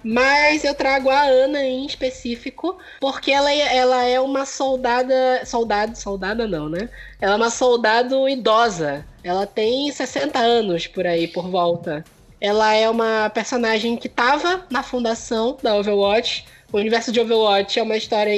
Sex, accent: female, Brazilian